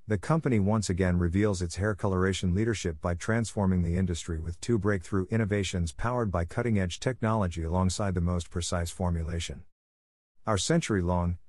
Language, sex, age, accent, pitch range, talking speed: English, male, 50-69, American, 90-115 Hz, 145 wpm